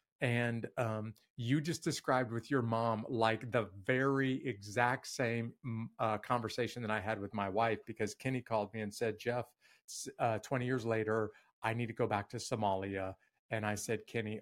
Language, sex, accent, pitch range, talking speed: English, male, American, 105-130 Hz, 180 wpm